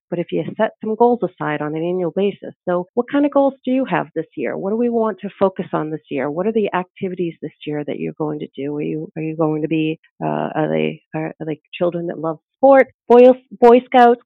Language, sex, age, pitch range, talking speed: English, female, 40-59, 160-205 Hz, 255 wpm